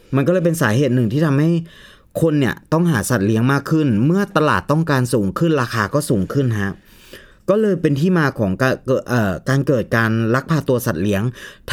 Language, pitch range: Thai, 115-155 Hz